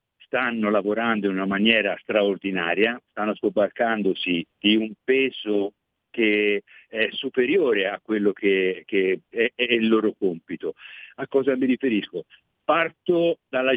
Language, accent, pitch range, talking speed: Italian, native, 100-125 Hz, 125 wpm